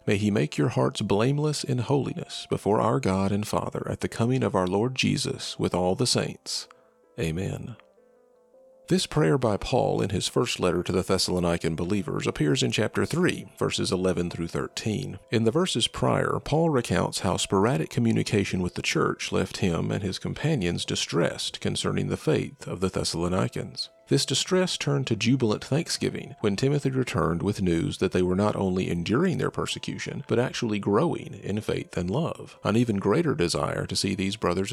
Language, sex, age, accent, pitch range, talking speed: English, male, 40-59, American, 90-130 Hz, 180 wpm